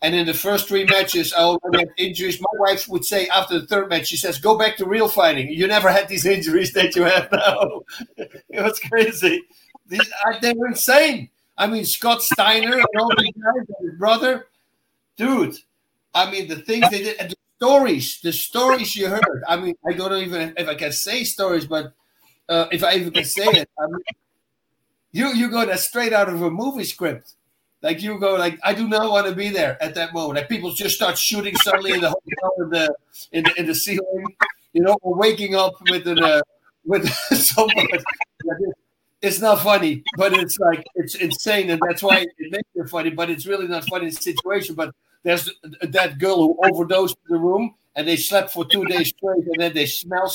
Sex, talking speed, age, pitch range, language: male, 205 wpm, 60-79, 170-210 Hz, English